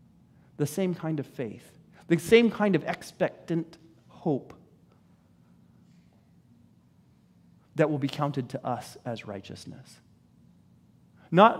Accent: American